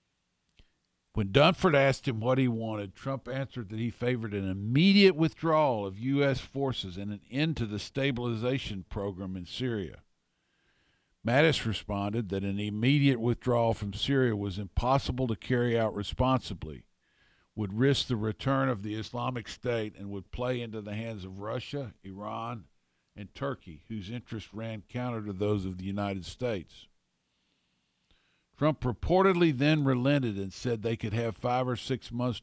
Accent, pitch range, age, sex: American, 100-125 Hz, 50-69, male